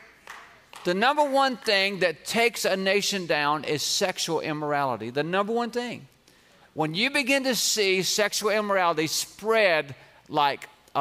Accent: American